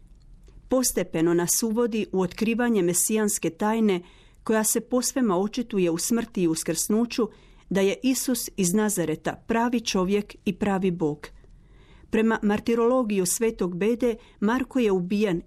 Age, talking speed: 40-59, 130 wpm